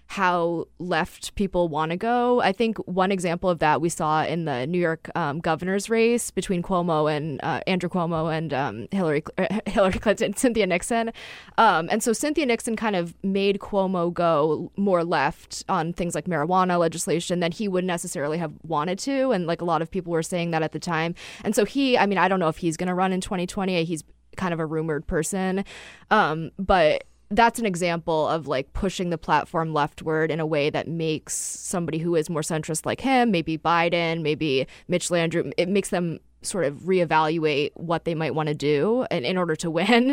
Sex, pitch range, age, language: female, 160-200 Hz, 20-39, English